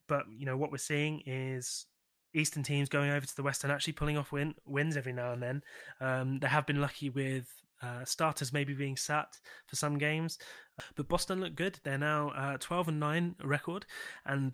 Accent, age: British, 20-39